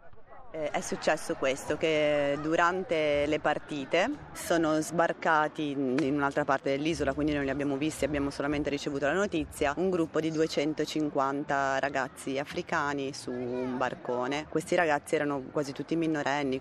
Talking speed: 135 wpm